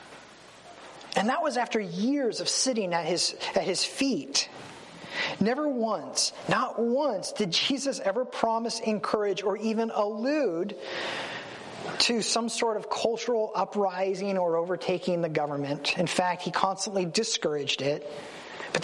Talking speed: 125 wpm